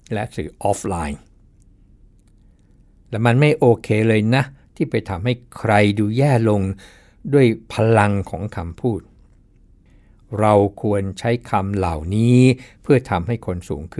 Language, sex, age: Thai, male, 60-79